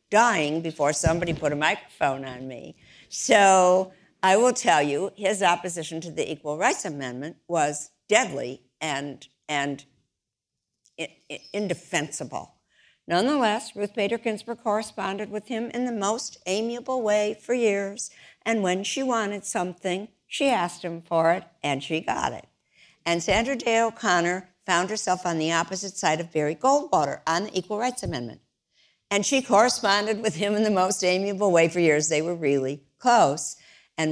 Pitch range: 150-205 Hz